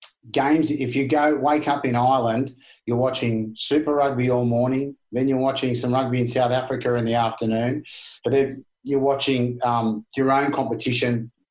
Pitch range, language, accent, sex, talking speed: 115-135 Hz, English, Australian, male, 170 wpm